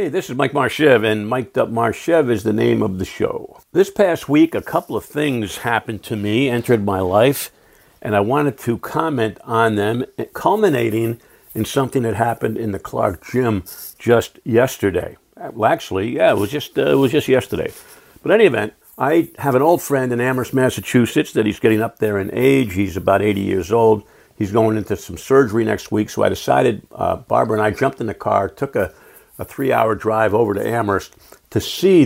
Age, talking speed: 60-79, 200 wpm